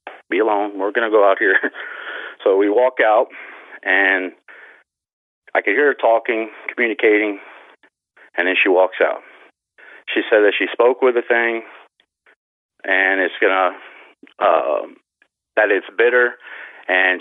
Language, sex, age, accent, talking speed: English, male, 40-59, American, 145 wpm